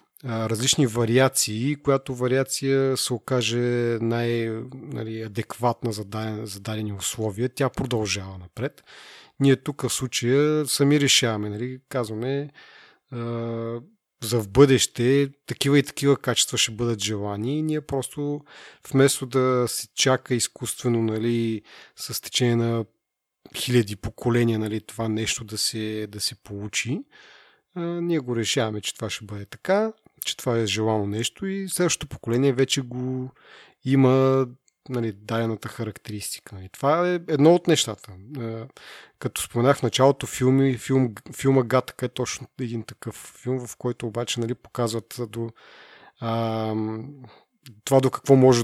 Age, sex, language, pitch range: 30-49, male, Bulgarian, 110-135 Hz